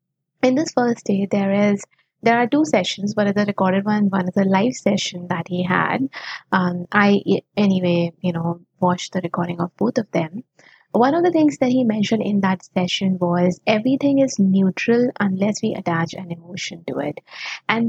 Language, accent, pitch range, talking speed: English, Indian, 185-245 Hz, 190 wpm